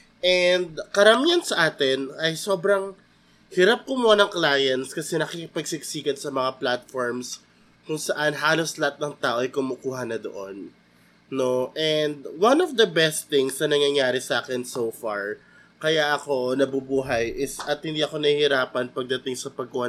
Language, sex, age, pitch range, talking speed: Filipino, male, 20-39, 130-185 Hz, 150 wpm